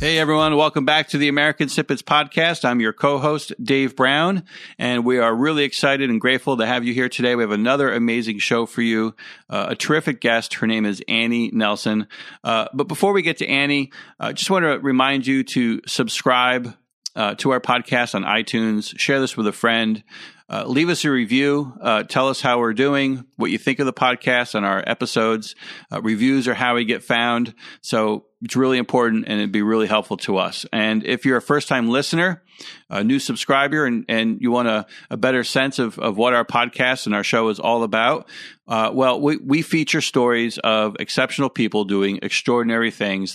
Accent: American